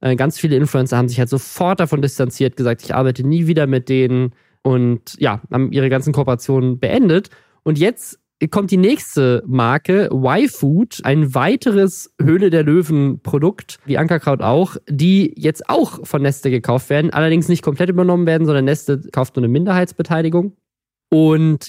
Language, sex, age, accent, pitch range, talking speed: German, male, 20-39, German, 135-175 Hz, 150 wpm